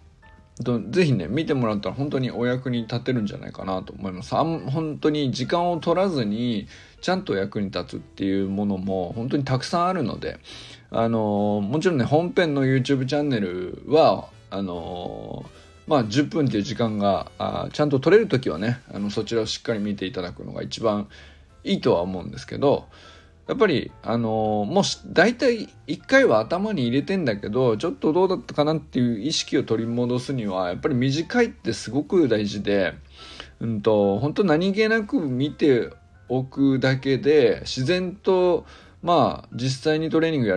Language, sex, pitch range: Japanese, male, 100-155 Hz